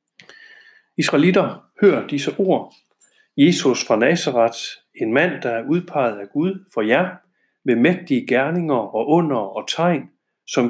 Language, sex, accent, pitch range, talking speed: Danish, male, native, 135-180 Hz, 135 wpm